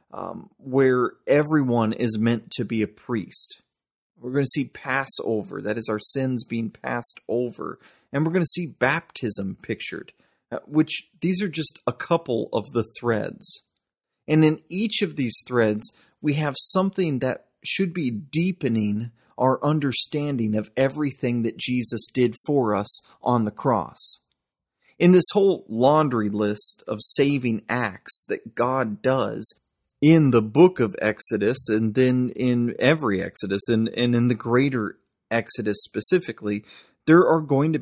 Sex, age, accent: male, 30-49, American